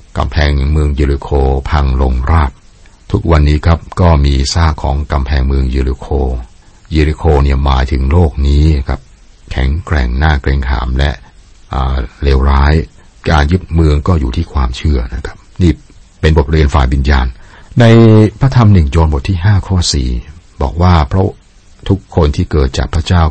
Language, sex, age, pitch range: Thai, male, 60-79, 70-85 Hz